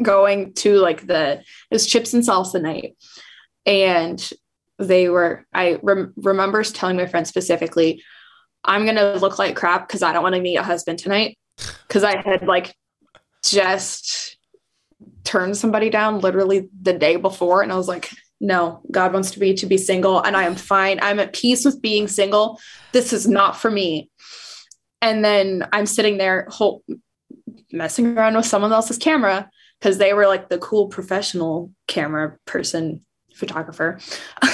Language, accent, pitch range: English, American, 185-250 Hz